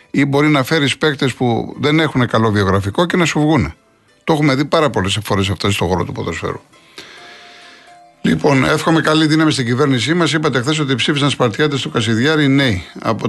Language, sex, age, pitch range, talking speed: Greek, male, 50-69, 110-150 Hz, 185 wpm